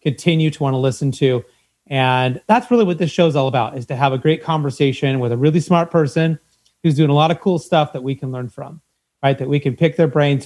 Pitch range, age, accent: 140-175 Hz, 30-49, American